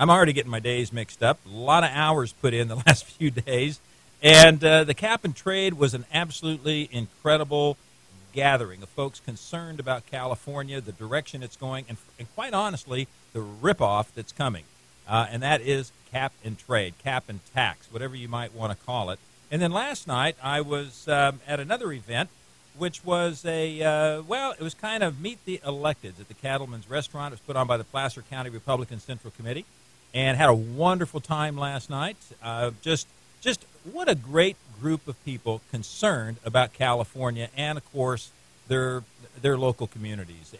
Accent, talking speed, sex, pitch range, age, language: American, 185 wpm, male, 115-155 Hz, 50-69, English